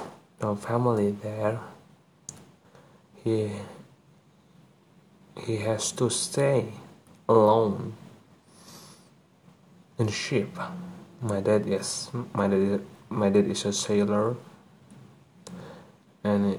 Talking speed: 80 wpm